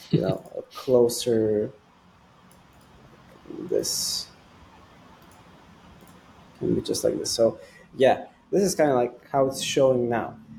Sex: male